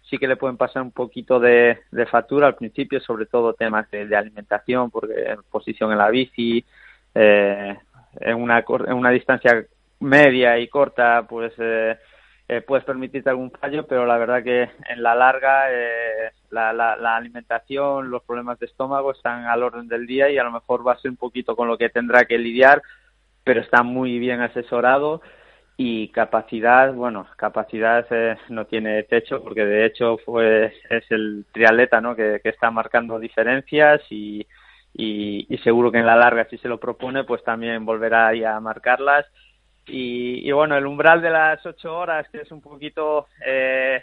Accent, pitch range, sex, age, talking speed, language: Spanish, 115-135 Hz, male, 20-39, 180 wpm, Spanish